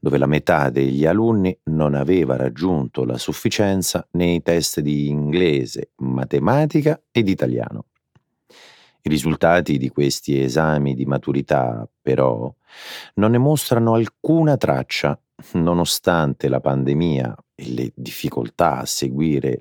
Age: 40-59